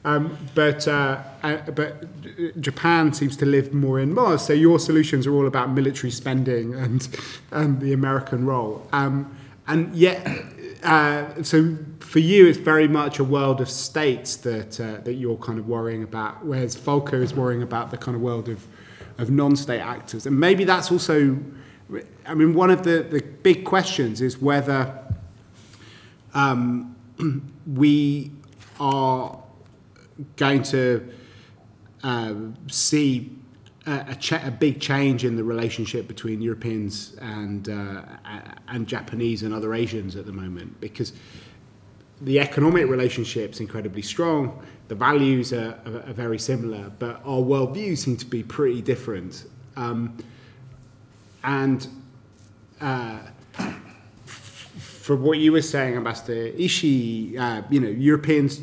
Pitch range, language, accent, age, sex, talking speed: 115-145 Hz, English, British, 30-49, male, 145 wpm